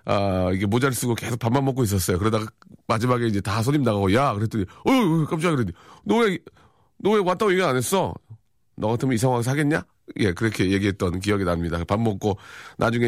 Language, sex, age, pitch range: Korean, male, 30-49, 95-125 Hz